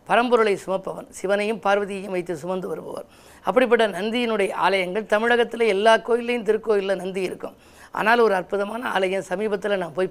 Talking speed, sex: 135 wpm, female